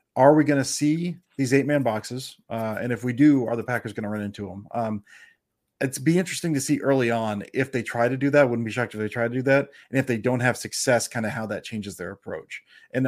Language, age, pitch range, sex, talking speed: English, 30-49, 120-145 Hz, male, 270 wpm